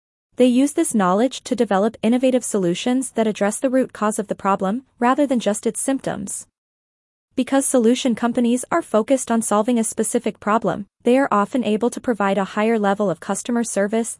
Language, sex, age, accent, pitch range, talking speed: English, female, 20-39, American, 205-260 Hz, 180 wpm